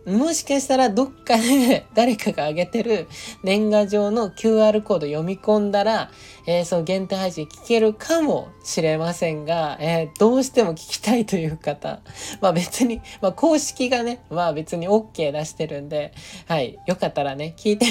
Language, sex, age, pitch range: Japanese, male, 20-39, 155-220 Hz